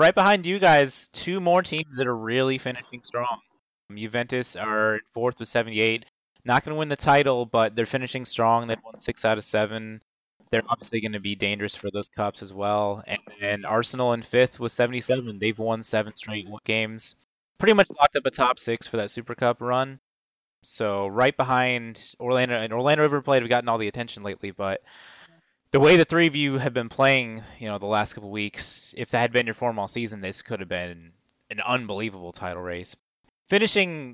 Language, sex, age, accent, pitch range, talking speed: English, male, 20-39, American, 105-130 Hz, 200 wpm